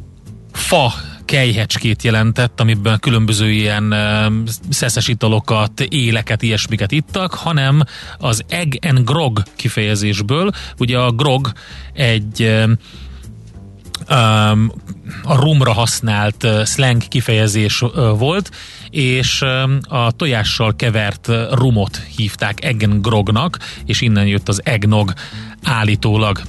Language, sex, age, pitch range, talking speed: Hungarian, male, 30-49, 105-125 Hz, 90 wpm